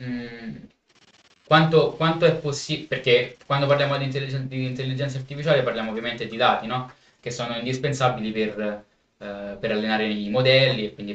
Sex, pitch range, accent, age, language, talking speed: male, 110-140 Hz, native, 20-39, Italian, 150 wpm